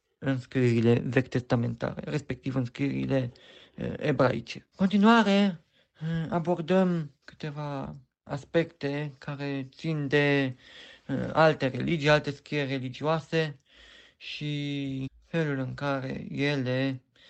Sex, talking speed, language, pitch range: male, 85 wpm, Romanian, 135-175 Hz